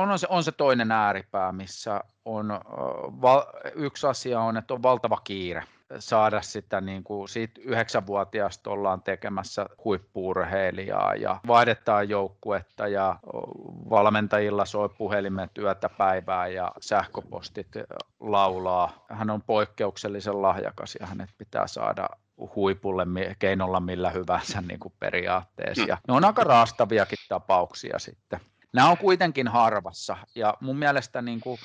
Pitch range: 95-115 Hz